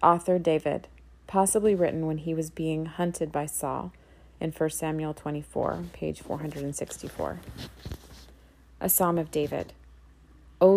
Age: 30-49